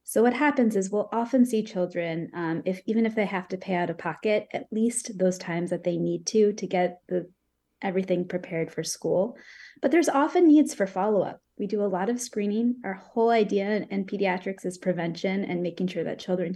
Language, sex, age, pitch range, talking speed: English, female, 20-39, 175-220 Hz, 210 wpm